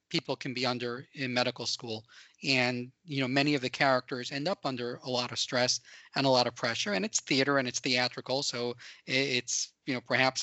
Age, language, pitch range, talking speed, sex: 40-59, English, 125-145 Hz, 215 wpm, male